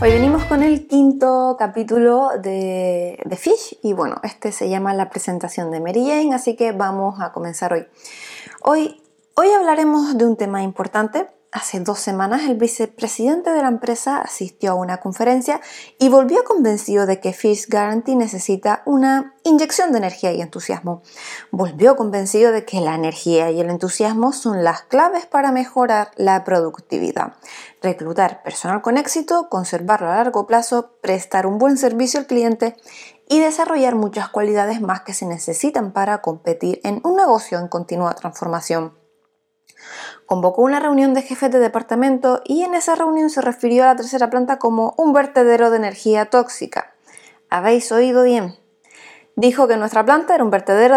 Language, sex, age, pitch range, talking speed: Spanish, female, 20-39, 190-265 Hz, 160 wpm